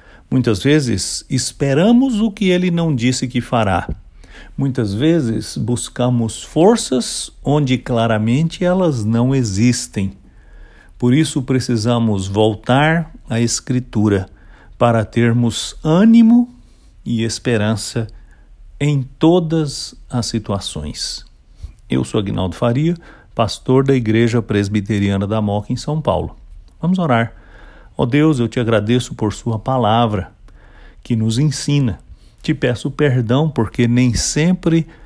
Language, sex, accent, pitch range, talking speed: English, male, Brazilian, 105-140 Hz, 115 wpm